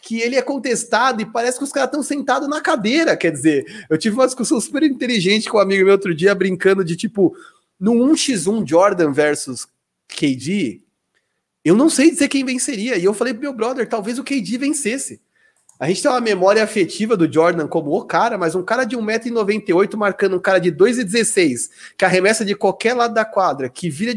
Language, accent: Portuguese, Brazilian